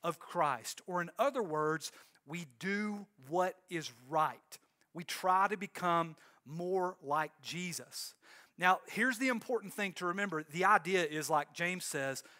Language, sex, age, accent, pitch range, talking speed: English, male, 40-59, American, 150-200 Hz, 145 wpm